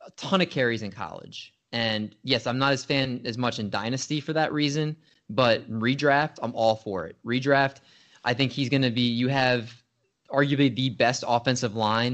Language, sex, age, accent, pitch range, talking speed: English, male, 20-39, American, 110-130 Hz, 195 wpm